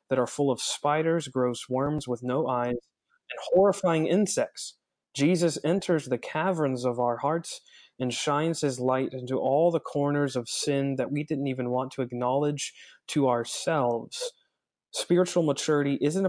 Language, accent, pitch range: English, American, 125-145 Hz